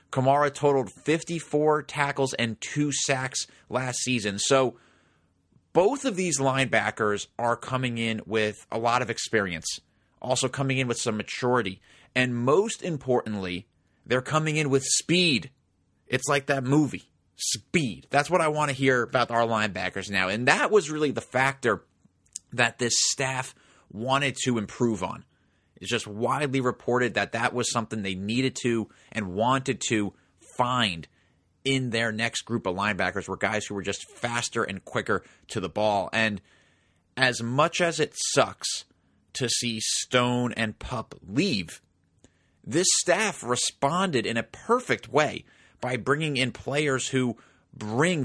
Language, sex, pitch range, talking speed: English, male, 110-135 Hz, 150 wpm